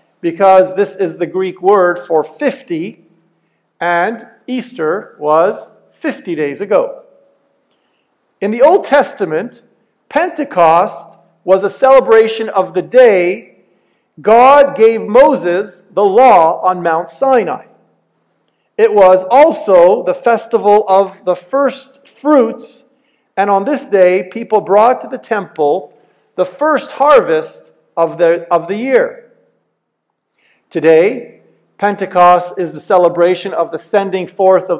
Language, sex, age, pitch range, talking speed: English, male, 50-69, 175-265 Hz, 115 wpm